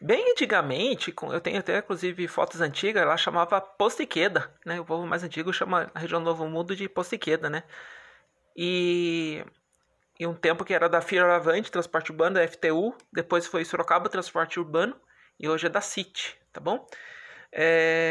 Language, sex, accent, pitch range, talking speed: Portuguese, male, Brazilian, 160-190 Hz, 170 wpm